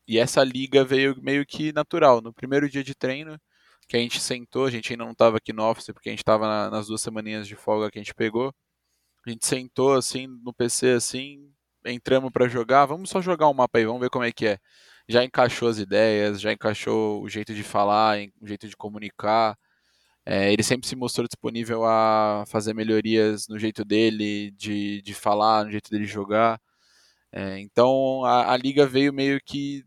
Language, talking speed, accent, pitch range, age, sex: Portuguese, 200 wpm, Brazilian, 110-130 Hz, 20-39, male